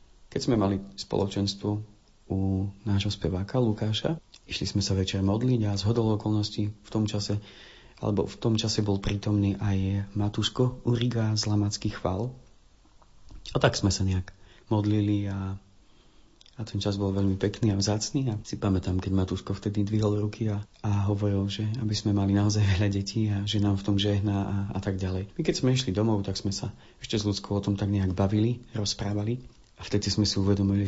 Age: 30-49